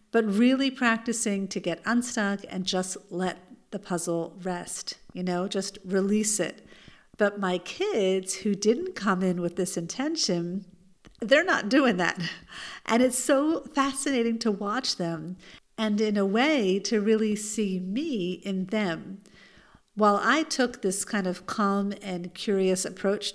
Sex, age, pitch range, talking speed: female, 50-69, 190-245 Hz, 150 wpm